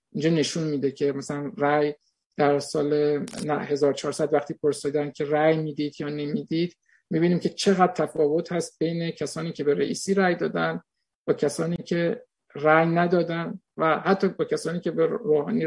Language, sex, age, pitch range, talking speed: Persian, male, 50-69, 150-190 Hz, 155 wpm